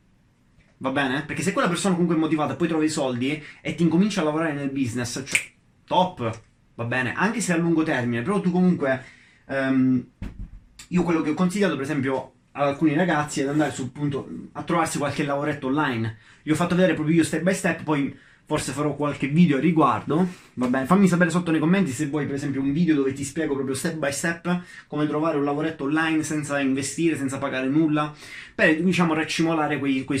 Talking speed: 205 wpm